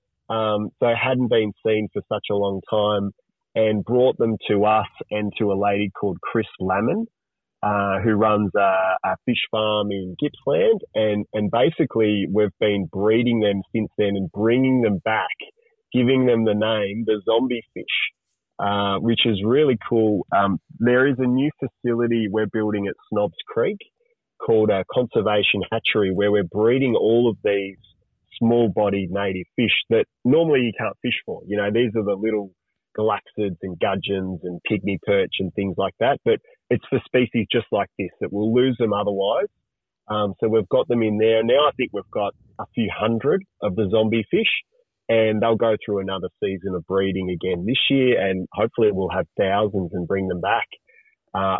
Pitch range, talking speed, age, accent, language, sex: 100-125 Hz, 180 wpm, 20-39, Australian, English, male